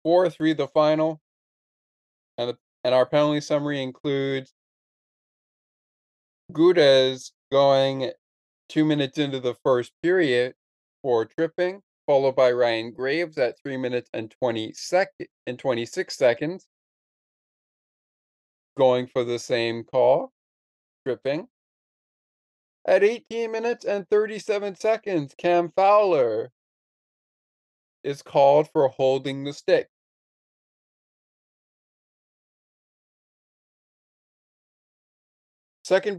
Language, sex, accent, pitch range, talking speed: English, male, American, 125-180 Hz, 95 wpm